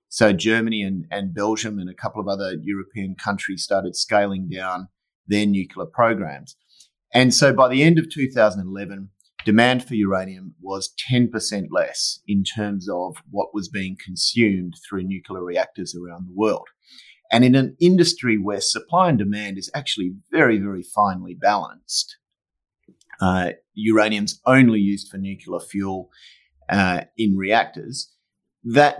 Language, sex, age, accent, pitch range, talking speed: English, male, 30-49, Australian, 95-120 Hz, 145 wpm